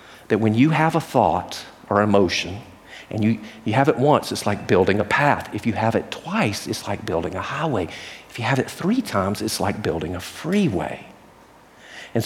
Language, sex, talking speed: English, male, 200 wpm